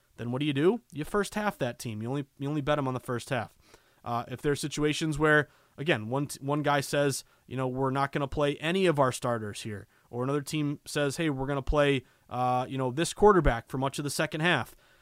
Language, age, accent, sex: English, 30-49, American, male